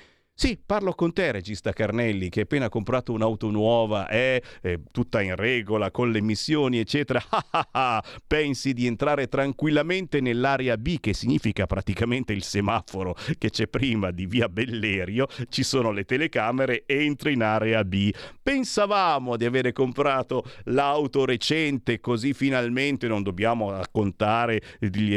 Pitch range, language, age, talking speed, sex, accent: 100-135 Hz, Italian, 50-69, 135 wpm, male, native